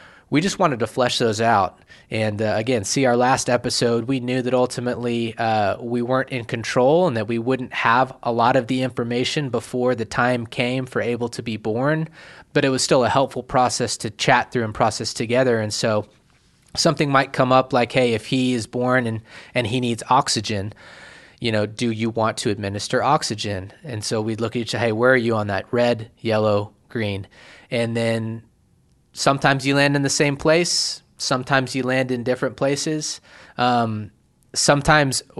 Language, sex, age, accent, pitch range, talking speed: English, male, 20-39, American, 115-130 Hz, 190 wpm